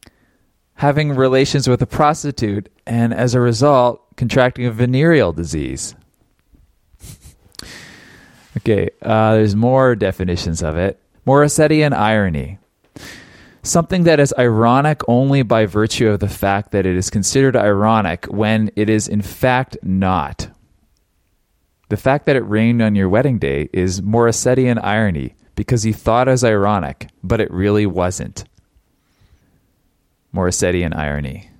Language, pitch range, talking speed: English, 95-125 Hz, 125 wpm